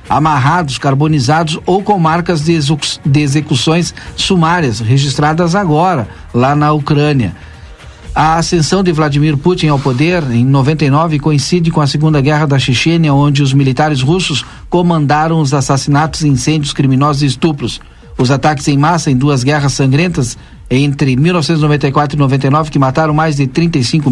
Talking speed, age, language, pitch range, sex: 145 wpm, 50-69, Portuguese, 140-165 Hz, male